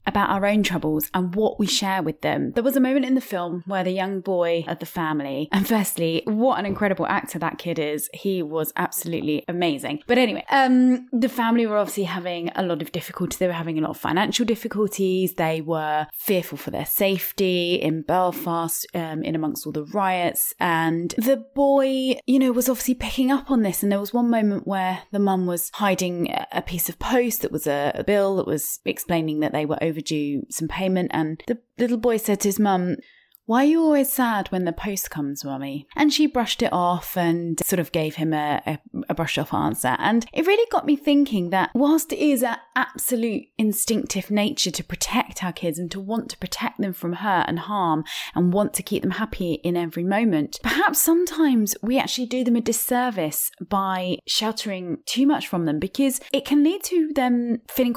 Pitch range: 170-245 Hz